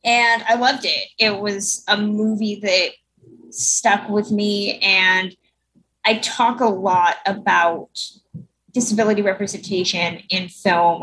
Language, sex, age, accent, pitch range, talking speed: English, female, 20-39, American, 190-230 Hz, 120 wpm